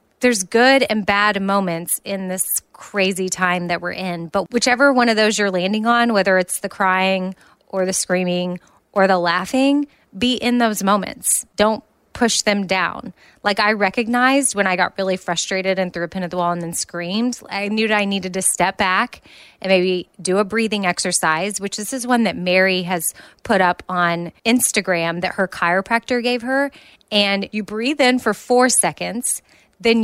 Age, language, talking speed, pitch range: 20-39, English, 190 wpm, 180-230 Hz